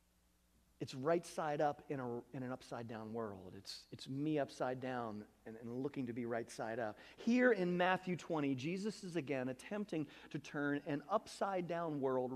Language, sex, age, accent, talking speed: English, male, 40-59, American, 185 wpm